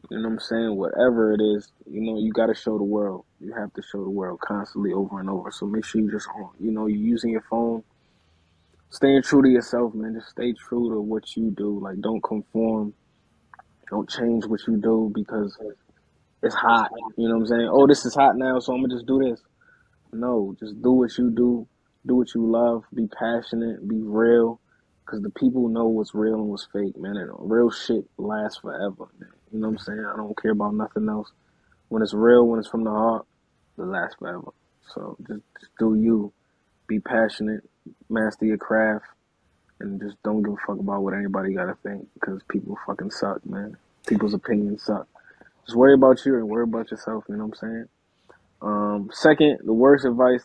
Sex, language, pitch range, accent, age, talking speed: male, English, 105-115 Hz, American, 20-39, 210 wpm